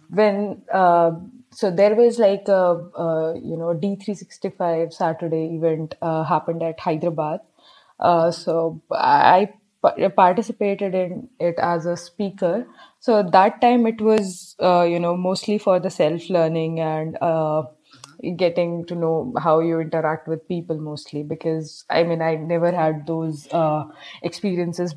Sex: female